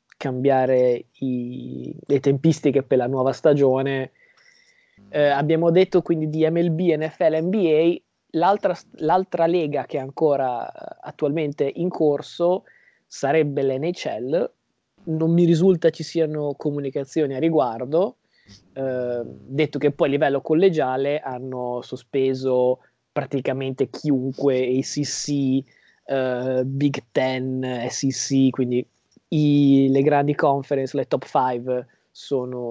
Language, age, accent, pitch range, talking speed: Italian, 20-39, native, 130-155 Hz, 110 wpm